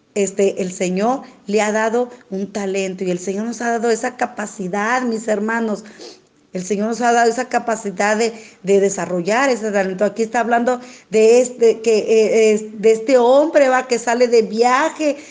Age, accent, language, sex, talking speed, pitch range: 40-59, Mexican, Spanish, female, 175 wpm, 215-260 Hz